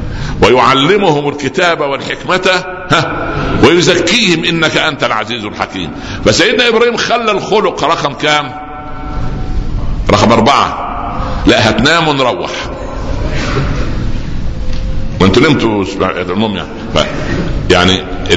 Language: Arabic